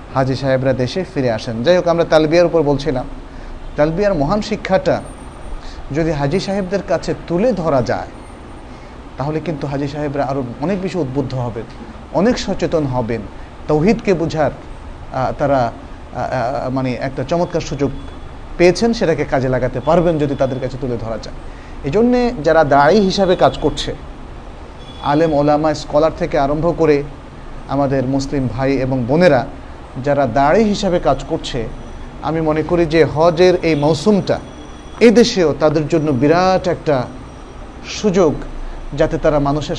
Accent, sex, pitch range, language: native, male, 130-170 Hz, Bengali